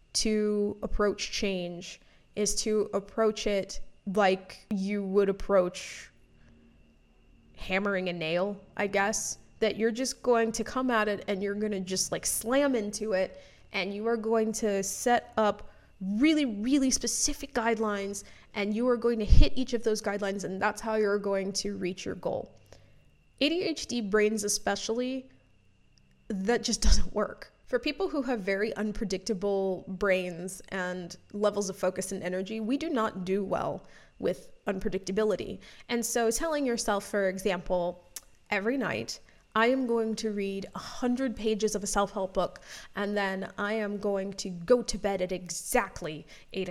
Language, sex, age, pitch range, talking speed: English, female, 20-39, 190-230 Hz, 155 wpm